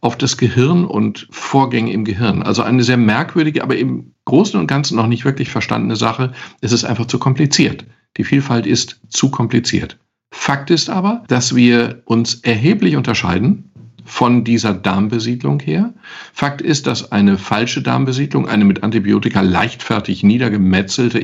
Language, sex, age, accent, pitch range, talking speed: German, male, 50-69, German, 105-135 Hz, 155 wpm